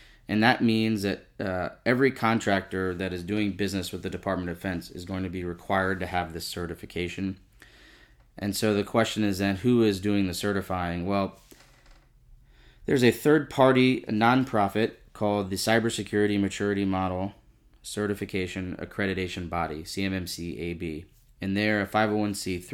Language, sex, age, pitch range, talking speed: English, male, 30-49, 90-105 Hz, 145 wpm